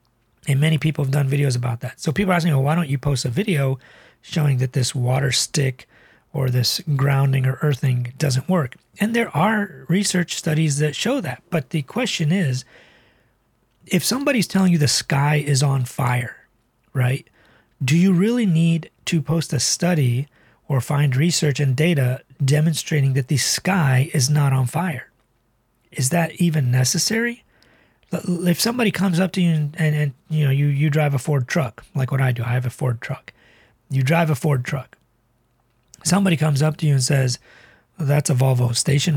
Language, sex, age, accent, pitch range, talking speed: English, male, 40-59, American, 130-165 Hz, 185 wpm